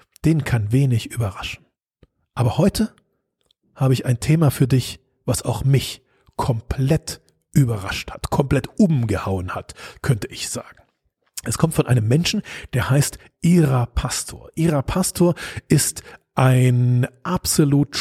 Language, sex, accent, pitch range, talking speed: German, male, German, 125-150 Hz, 130 wpm